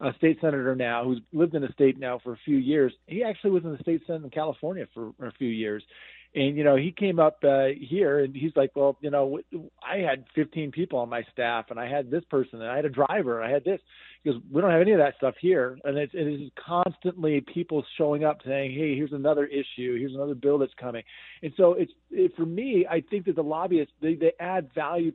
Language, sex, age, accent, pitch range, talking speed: English, male, 40-59, American, 130-160 Hz, 250 wpm